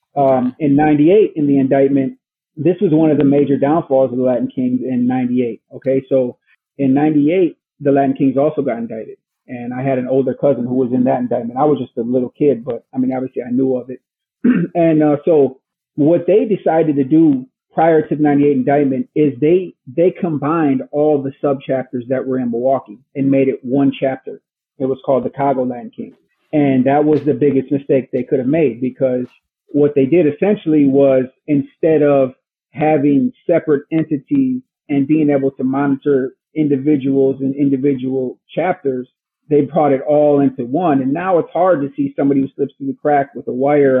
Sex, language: male, English